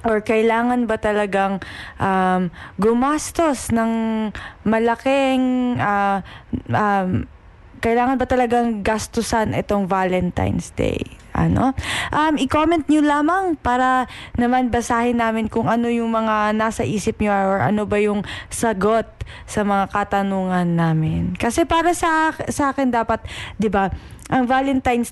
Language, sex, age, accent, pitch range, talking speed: Filipino, female, 20-39, native, 190-235 Hz, 125 wpm